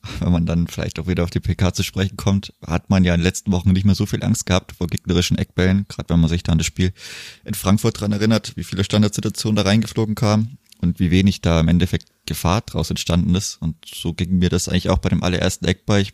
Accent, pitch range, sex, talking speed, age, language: German, 85-105 Hz, male, 255 wpm, 20-39, German